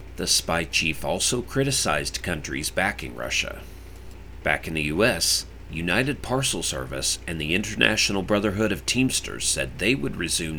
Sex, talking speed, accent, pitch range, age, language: male, 140 wpm, American, 75-105 Hz, 40-59, English